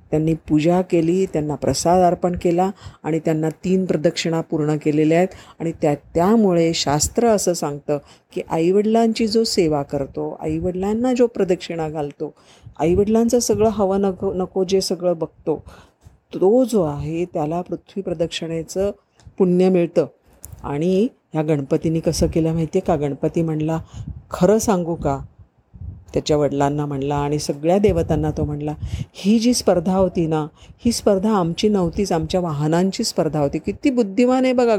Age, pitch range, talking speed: 40-59, 155-200 Hz, 145 wpm